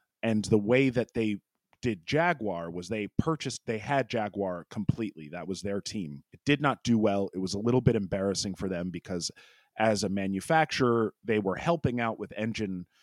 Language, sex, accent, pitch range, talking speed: English, male, American, 95-125 Hz, 190 wpm